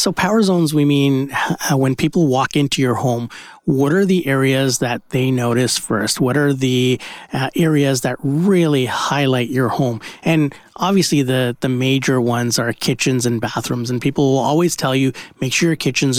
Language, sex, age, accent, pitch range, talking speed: English, male, 30-49, American, 125-150 Hz, 185 wpm